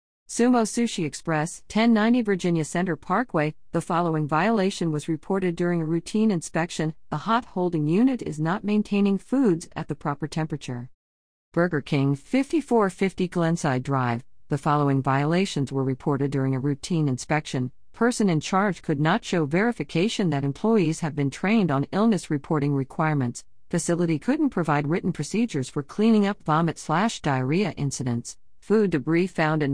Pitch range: 145-195 Hz